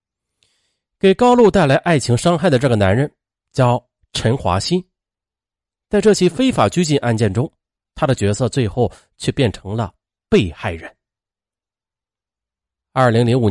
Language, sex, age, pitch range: Chinese, male, 30-49, 105-170 Hz